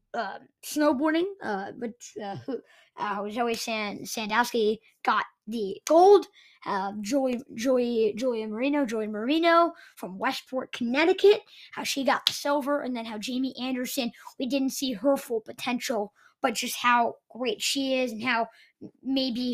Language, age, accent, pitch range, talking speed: English, 20-39, American, 230-290 Hz, 140 wpm